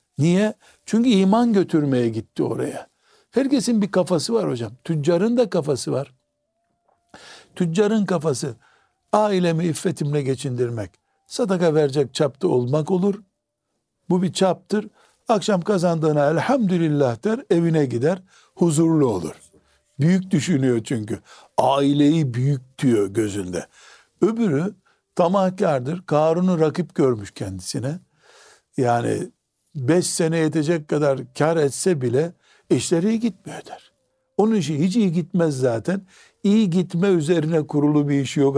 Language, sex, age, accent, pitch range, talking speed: Turkish, male, 60-79, native, 140-185 Hz, 115 wpm